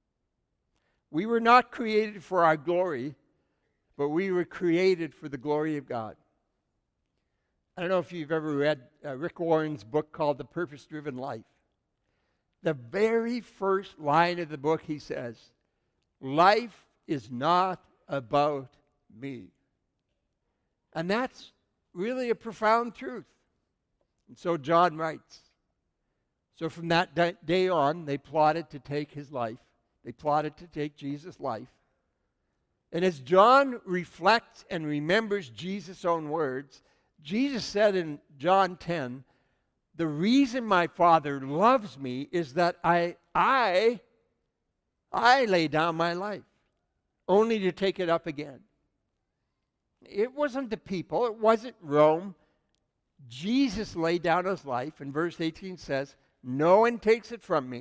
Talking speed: 135 wpm